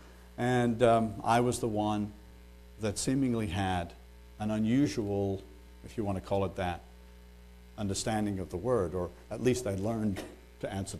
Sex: male